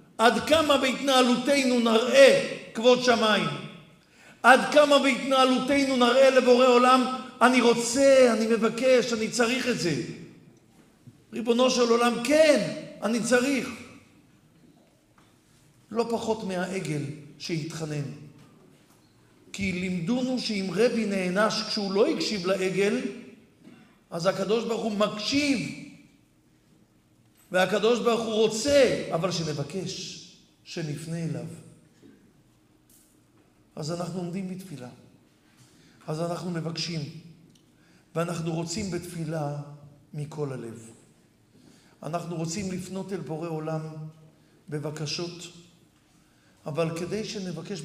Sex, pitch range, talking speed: male, 160-235 Hz, 95 wpm